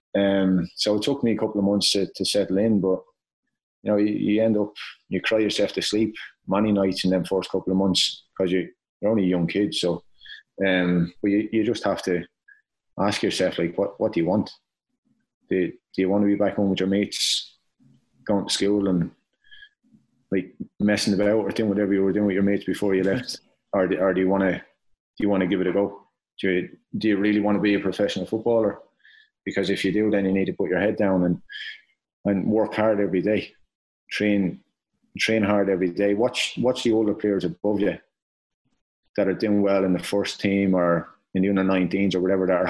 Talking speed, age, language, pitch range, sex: 225 wpm, 30-49, English, 95-105 Hz, male